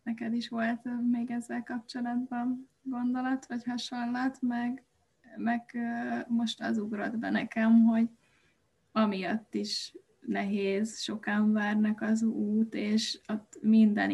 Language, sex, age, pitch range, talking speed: Hungarian, female, 20-39, 220-245 Hz, 115 wpm